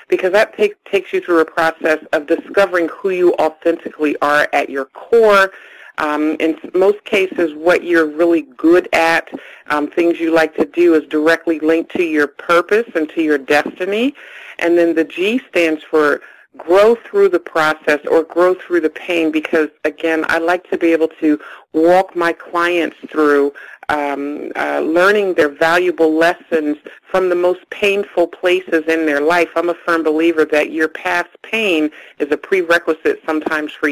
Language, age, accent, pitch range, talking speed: English, 50-69, American, 150-175 Hz, 170 wpm